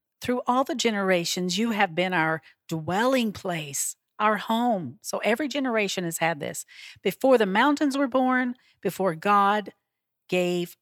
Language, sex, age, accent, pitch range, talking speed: English, female, 40-59, American, 160-210 Hz, 145 wpm